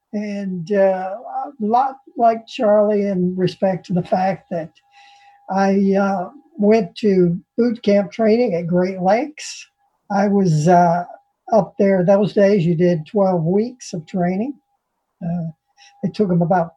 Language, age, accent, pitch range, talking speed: English, 50-69, American, 180-220 Hz, 145 wpm